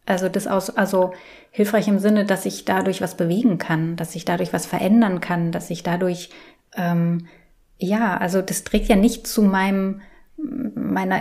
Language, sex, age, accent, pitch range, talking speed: German, female, 20-39, German, 185-225 Hz, 170 wpm